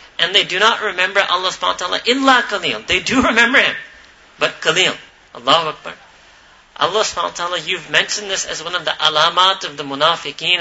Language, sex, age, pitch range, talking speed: English, male, 40-59, 155-205 Hz, 190 wpm